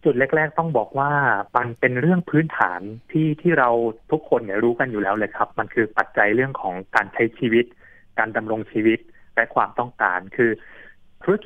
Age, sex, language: 20-39, male, Thai